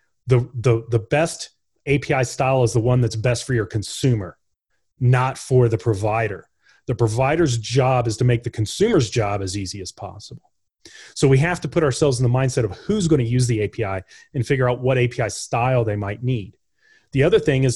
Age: 30-49